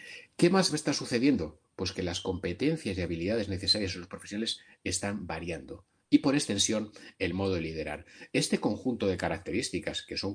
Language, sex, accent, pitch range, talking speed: Spanish, male, Spanish, 95-115 Hz, 170 wpm